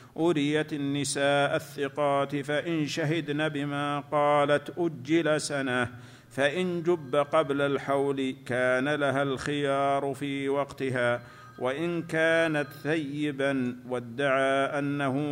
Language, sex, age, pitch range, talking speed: Arabic, male, 50-69, 135-150 Hz, 90 wpm